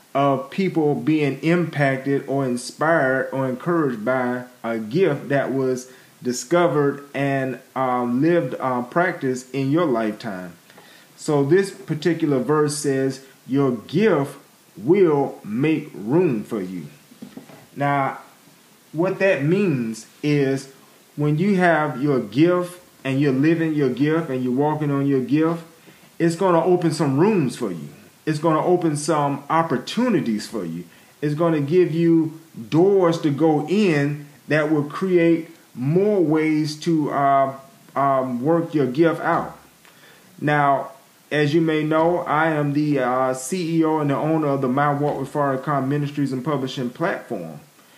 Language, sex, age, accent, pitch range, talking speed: English, male, 30-49, American, 135-165 Hz, 145 wpm